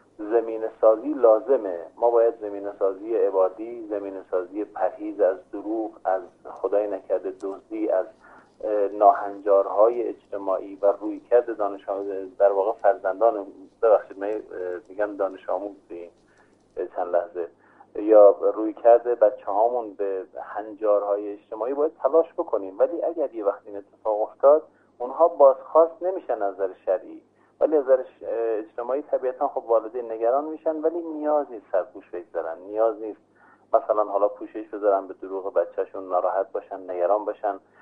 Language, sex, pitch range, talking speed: Persian, male, 105-155 Hz, 125 wpm